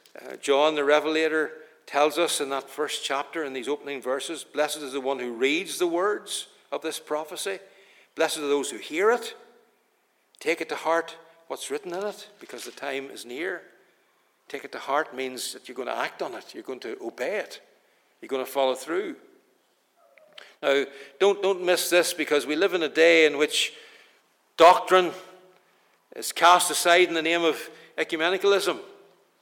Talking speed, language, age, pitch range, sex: 180 wpm, English, 60-79, 150-185 Hz, male